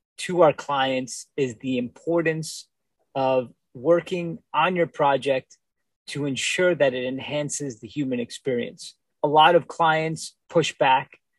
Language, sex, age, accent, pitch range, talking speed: English, male, 30-49, American, 135-160 Hz, 130 wpm